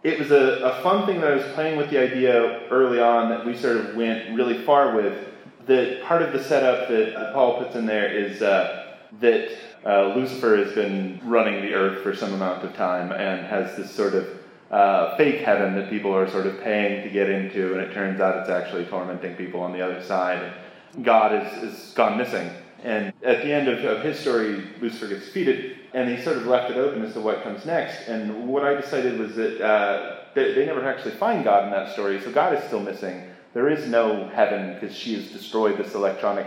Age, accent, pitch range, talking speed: 30-49, American, 100-130 Hz, 220 wpm